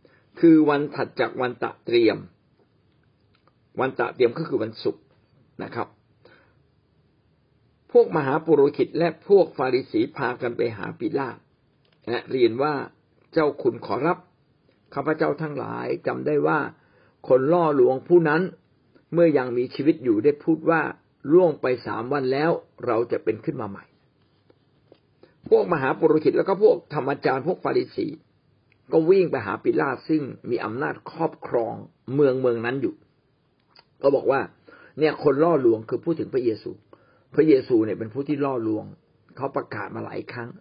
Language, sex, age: Thai, male, 60-79